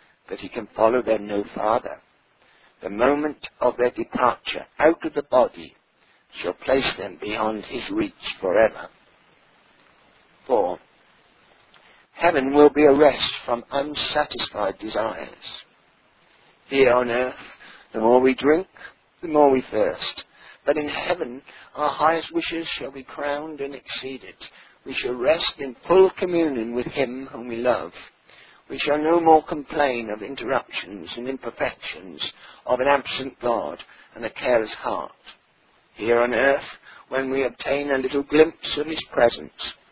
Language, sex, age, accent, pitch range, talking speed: English, male, 60-79, British, 120-150 Hz, 140 wpm